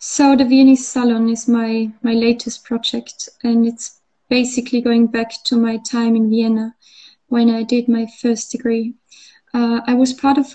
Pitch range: 230-250 Hz